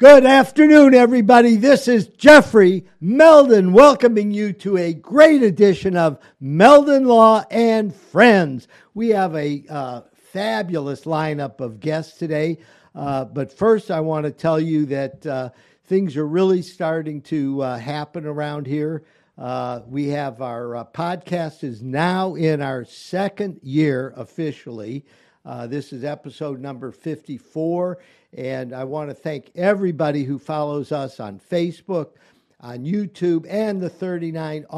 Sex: male